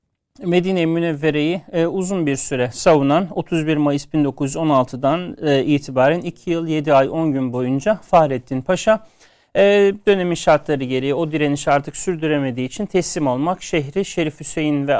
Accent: native